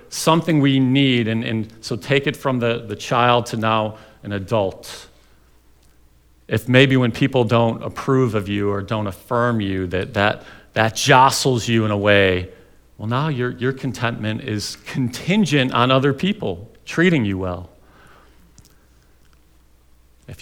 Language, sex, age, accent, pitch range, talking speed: English, male, 40-59, American, 110-140 Hz, 145 wpm